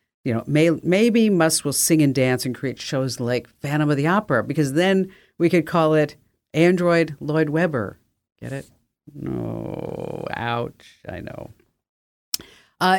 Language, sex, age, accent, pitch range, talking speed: English, female, 50-69, American, 120-165 Hz, 150 wpm